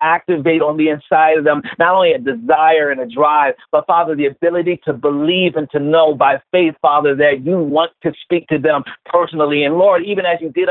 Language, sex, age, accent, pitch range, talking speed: English, male, 50-69, American, 160-190 Hz, 220 wpm